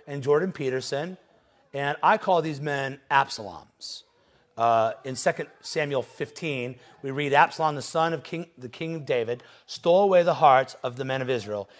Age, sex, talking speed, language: 40-59, male, 175 wpm, English